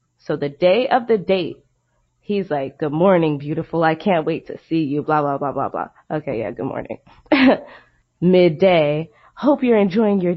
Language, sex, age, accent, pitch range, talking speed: English, female, 20-39, American, 160-215 Hz, 180 wpm